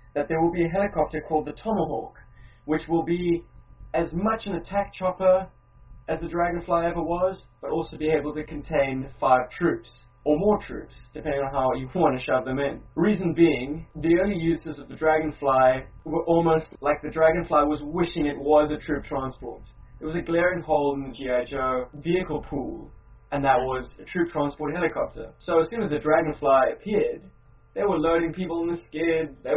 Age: 20-39